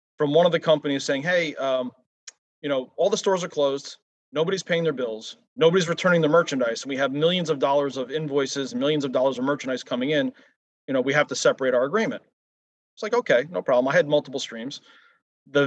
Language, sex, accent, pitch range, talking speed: English, male, American, 135-180 Hz, 215 wpm